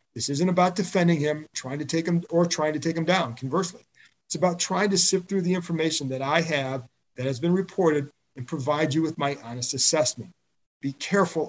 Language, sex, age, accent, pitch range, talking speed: English, male, 50-69, American, 135-175 Hz, 210 wpm